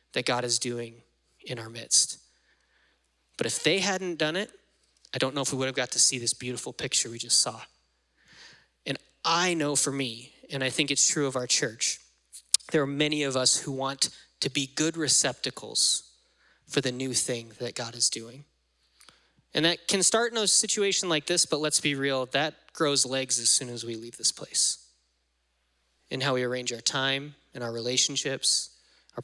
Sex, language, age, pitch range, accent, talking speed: male, English, 20-39, 120-155 Hz, American, 195 wpm